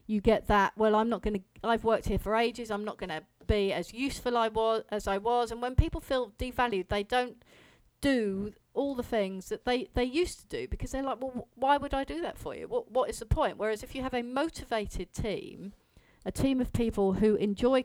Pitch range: 190-235 Hz